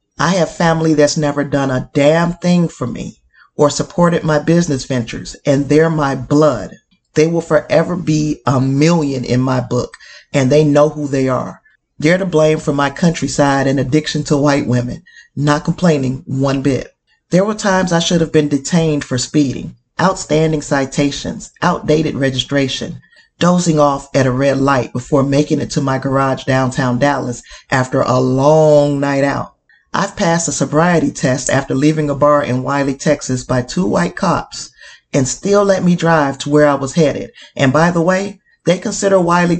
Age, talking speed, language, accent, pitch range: 40-59, 175 wpm, English, American, 135-165 Hz